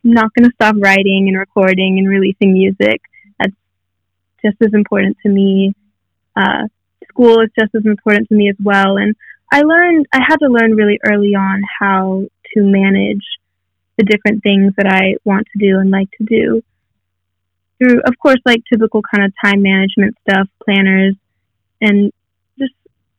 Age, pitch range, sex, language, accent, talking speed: 20-39, 195-230 Hz, female, English, American, 165 wpm